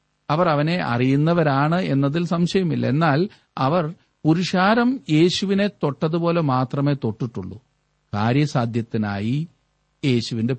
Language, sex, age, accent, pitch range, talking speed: Malayalam, male, 50-69, native, 120-160 Hz, 80 wpm